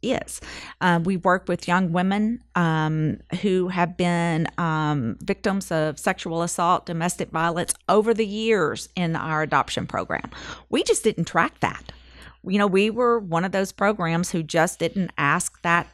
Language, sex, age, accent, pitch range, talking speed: English, female, 40-59, American, 160-205 Hz, 160 wpm